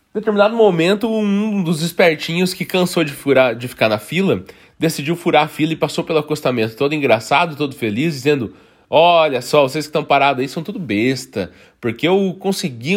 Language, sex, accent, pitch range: Portuguese, male, Brazilian, 130-180 Hz